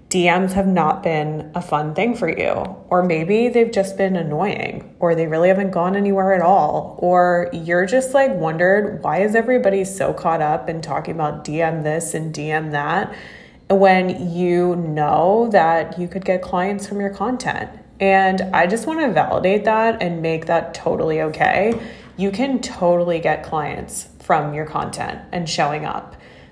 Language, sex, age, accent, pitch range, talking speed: English, female, 20-39, American, 160-200 Hz, 170 wpm